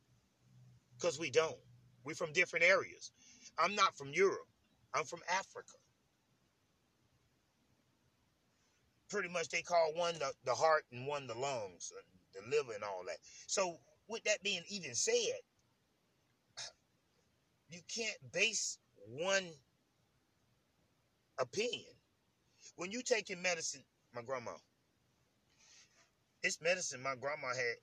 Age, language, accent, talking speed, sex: 30-49, English, American, 115 wpm, male